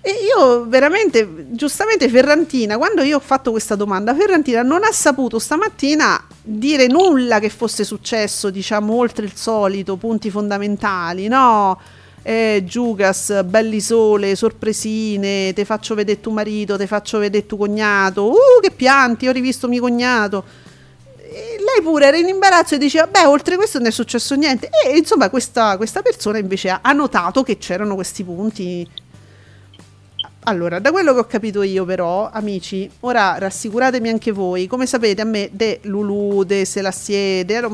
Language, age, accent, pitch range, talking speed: Italian, 40-59, native, 195-255 Hz, 155 wpm